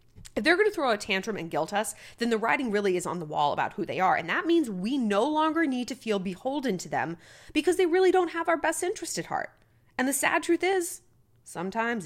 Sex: female